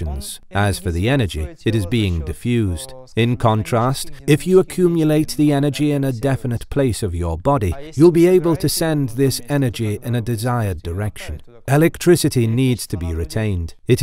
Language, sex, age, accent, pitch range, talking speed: English, male, 40-59, British, 95-140 Hz, 170 wpm